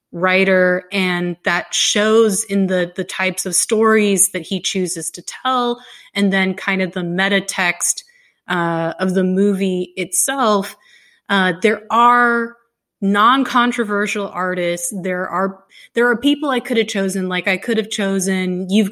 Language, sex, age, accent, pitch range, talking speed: English, female, 30-49, American, 185-225 Hz, 145 wpm